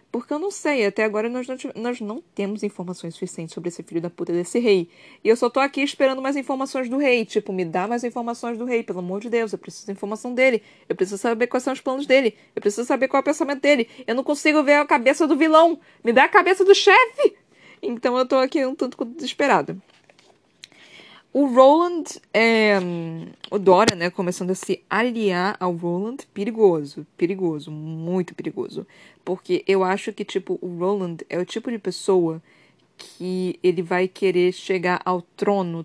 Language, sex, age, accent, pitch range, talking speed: Portuguese, female, 20-39, Brazilian, 180-255 Hz, 195 wpm